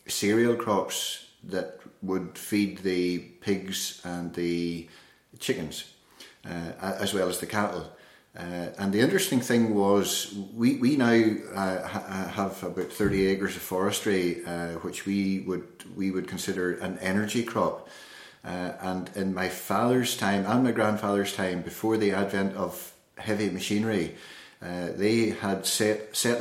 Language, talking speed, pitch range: English, 145 wpm, 95-105 Hz